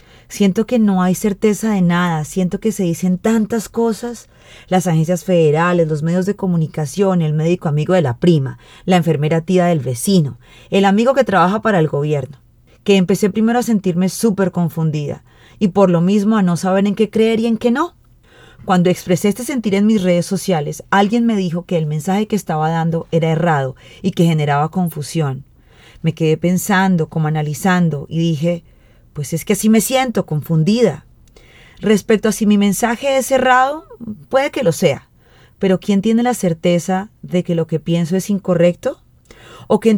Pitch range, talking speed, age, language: 165-215 Hz, 185 wpm, 30-49, Spanish